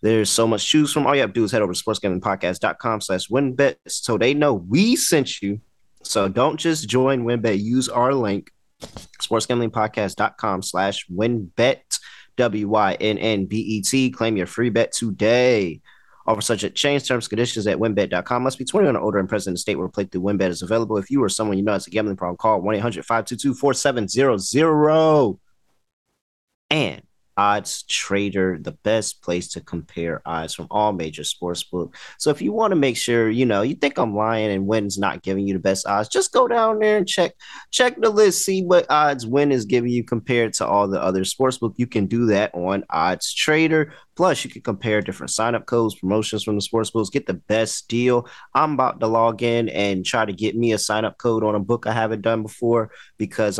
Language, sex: English, male